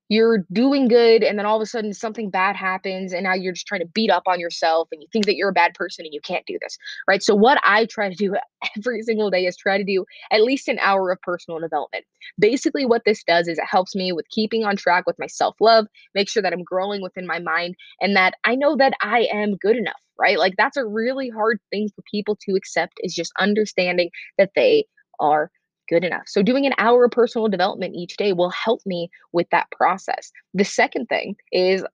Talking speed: 235 wpm